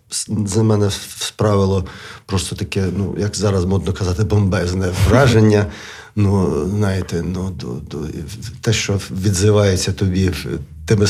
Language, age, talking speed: Ukrainian, 40-59, 120 wpm